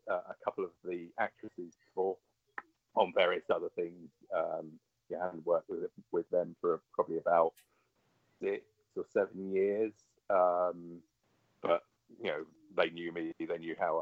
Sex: male